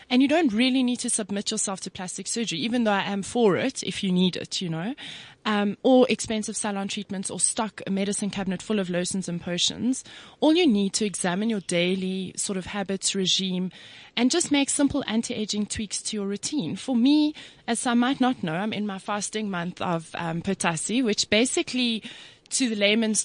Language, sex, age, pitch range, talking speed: English, female, 20-39, 180-230 Hz, 200 wpm